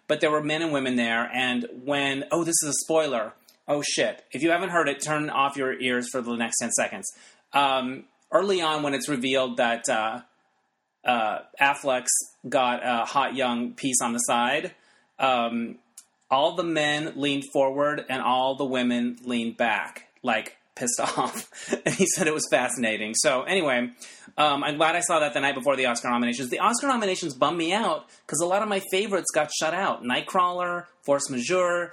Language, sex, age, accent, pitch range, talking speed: English, male, 30-49, American, 135-175 Hz, 190 wpm